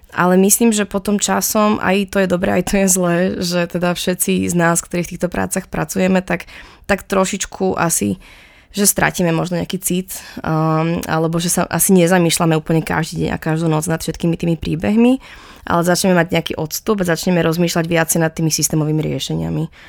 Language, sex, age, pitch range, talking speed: Slovak, female, 20-39, 160-185 Hz, 185 wpm